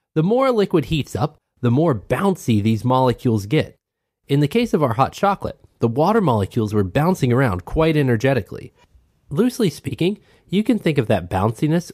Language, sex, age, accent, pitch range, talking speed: English, male, 30-49, American, 110-160 Hz, 175 wpm